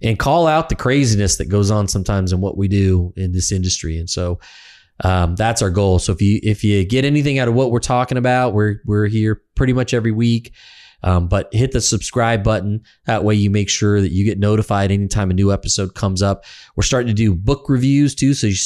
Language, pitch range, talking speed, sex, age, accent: English, 95-115 Hz, 230 wpm, male, 20-39, American